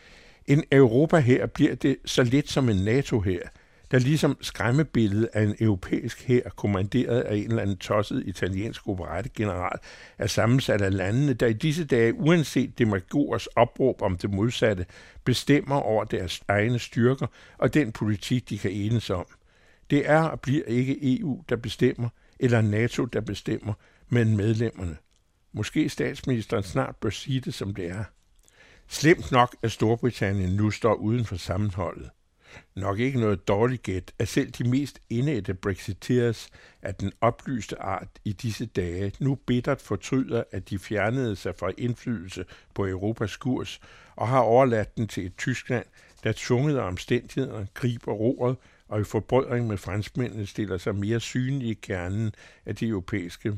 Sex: male